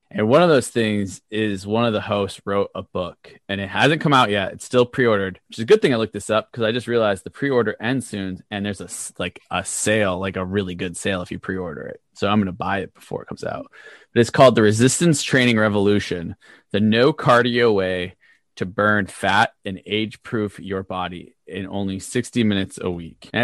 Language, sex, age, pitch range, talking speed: English, male, 20-39, 95-120 Hz, 230 wpm